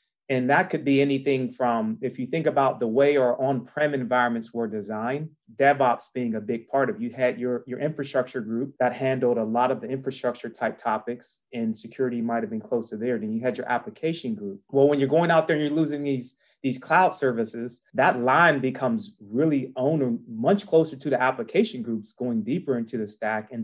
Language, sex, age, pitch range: English, male, 30-49, 120-150 Hz